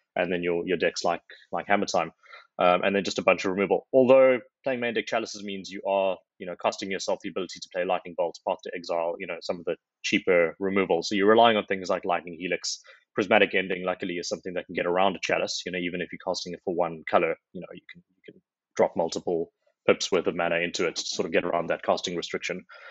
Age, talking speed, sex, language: 20-39, 250 wpm, male, English